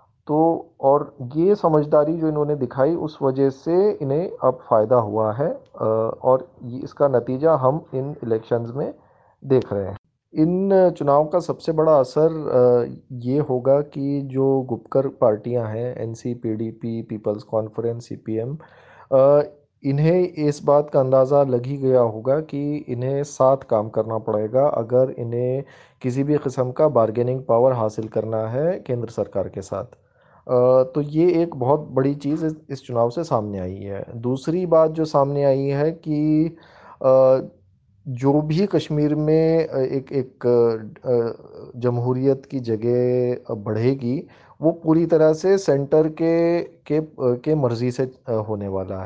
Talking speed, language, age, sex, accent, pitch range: 140 wpm, Hindi, 30-49, male, native, 120-150 Hz